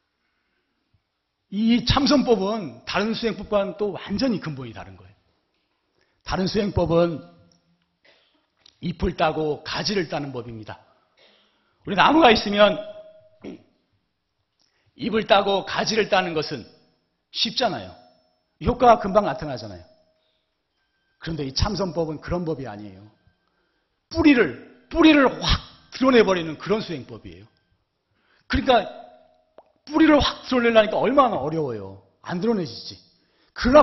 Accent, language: native, Korean